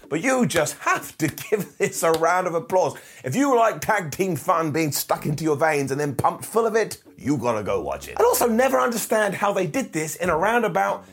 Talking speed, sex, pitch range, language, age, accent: 235 wpm, male, 135-200 Hz, English, 30-49, British